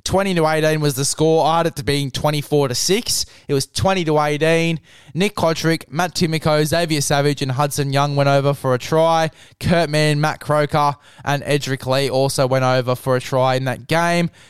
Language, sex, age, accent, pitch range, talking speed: English, male, 20-39, Australian, 145-170 Hz, 195 wpm